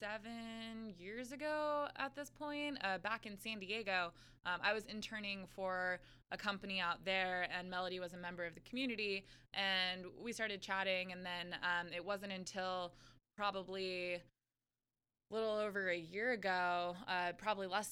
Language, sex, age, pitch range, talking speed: English, female, 20-39, 175-205 Hz, 155 wpm